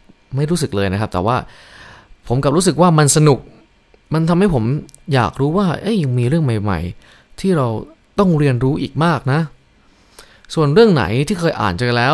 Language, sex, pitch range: Thai, male, 115-160 Hz